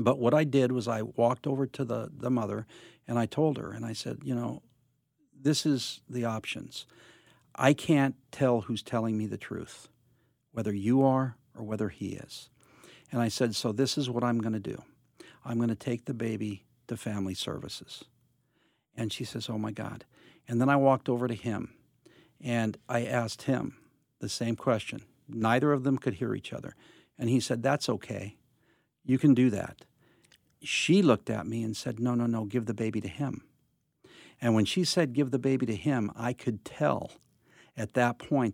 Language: English